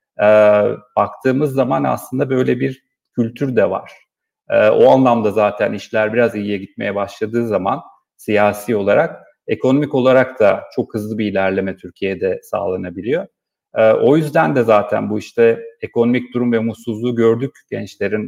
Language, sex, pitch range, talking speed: Turkish, male, 110-140 Hz, 140 wpm